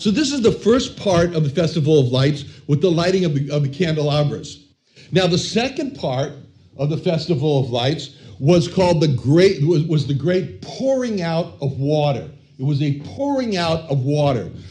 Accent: American